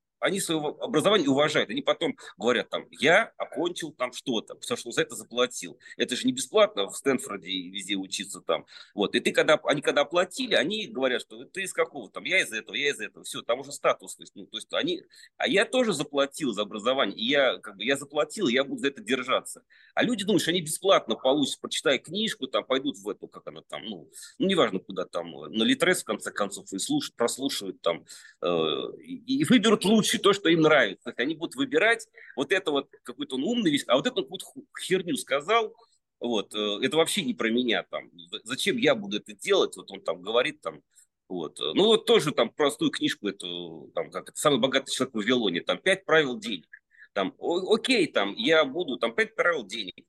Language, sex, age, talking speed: Russian, male, 30-49, 205 wpm